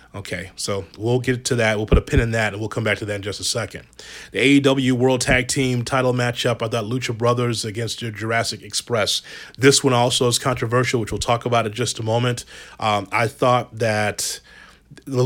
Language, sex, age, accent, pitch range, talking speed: English, male, 30-49, American, 105-125 Hz, 210 wpm